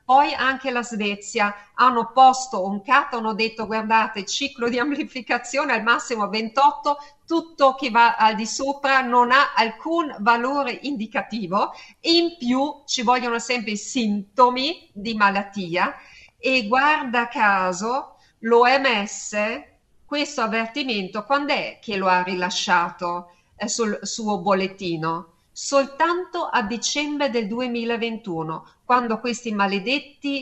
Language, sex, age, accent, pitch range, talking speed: Italian, female, 50-69, native, 195-255 Hz, 120 wpm